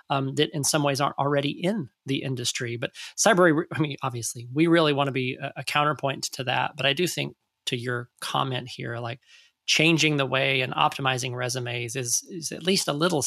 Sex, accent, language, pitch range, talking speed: male, American, English, 130-160 Hz, 210 wpm